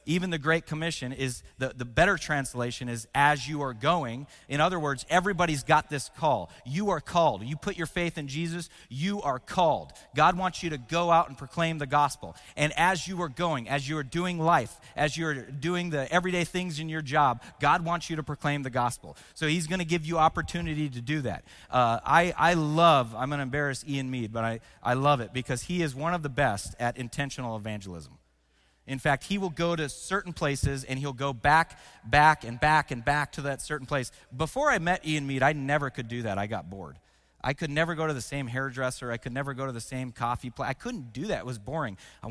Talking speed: 235 wpm